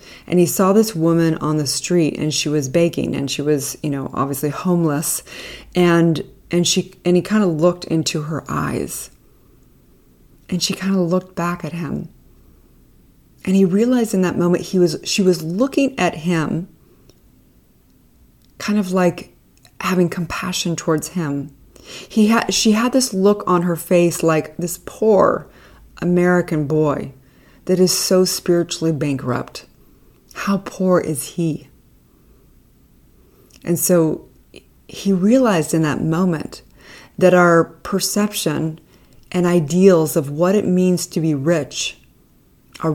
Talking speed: 140 wpm